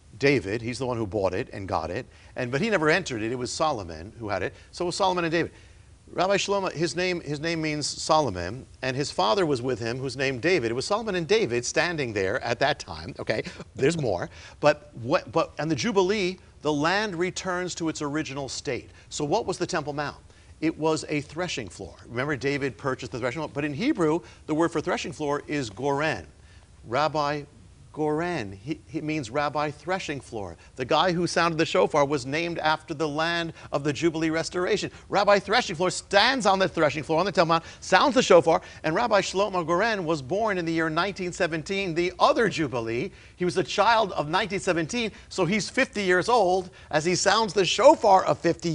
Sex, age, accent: male, 50-69, American